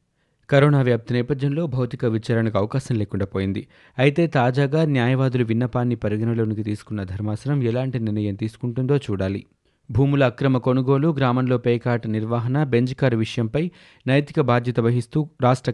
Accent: native